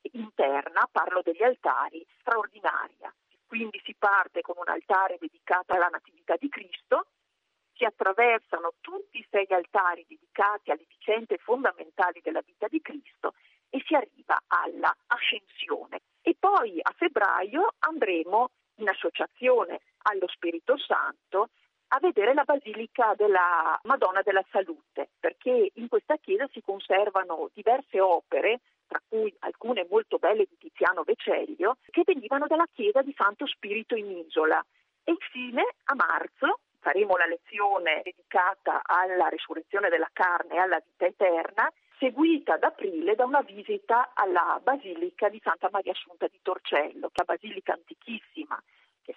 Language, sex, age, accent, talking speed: Italian, female, 50-69, native, 140 wpm